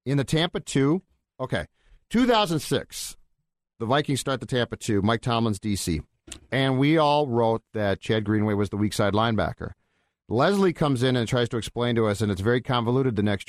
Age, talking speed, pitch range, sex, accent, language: 40-59, 180 wpm, 115-145 Hz, male, American, English